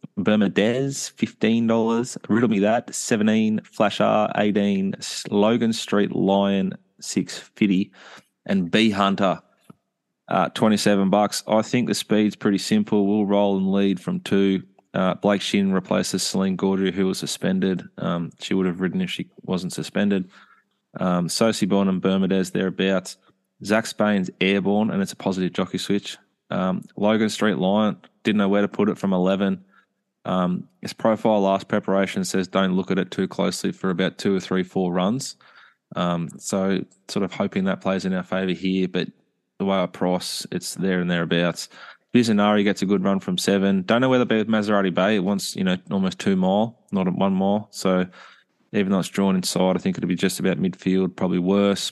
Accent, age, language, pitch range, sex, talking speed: Australian, 20-39, English, 95-105 Hz, male, 180 wpm